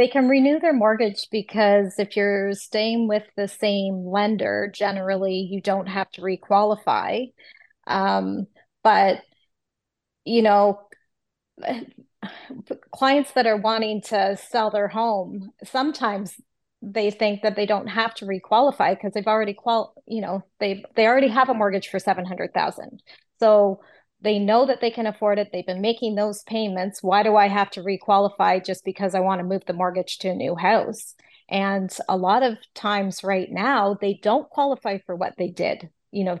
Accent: American